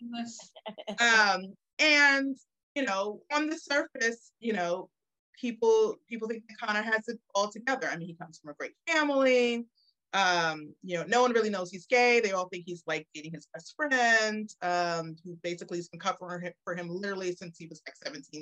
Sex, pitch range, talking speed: female, 175-245 Hz, 190 wpm